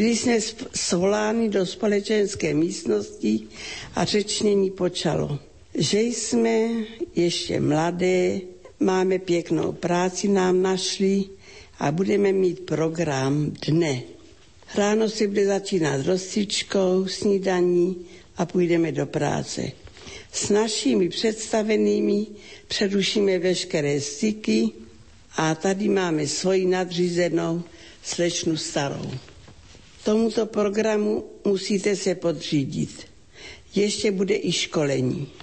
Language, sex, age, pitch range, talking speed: Slovak, female, 60-79, 170-205 Hz, 95 wpm